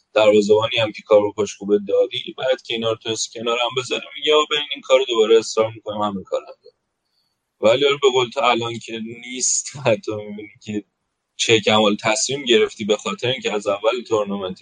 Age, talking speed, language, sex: 30-49, 170 wpm, Persian, male